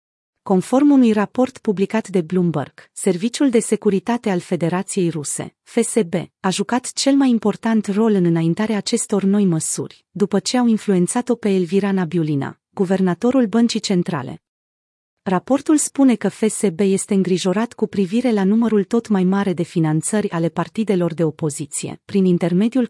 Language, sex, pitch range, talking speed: Romanian, female, 180-220 Hz, 145 wpm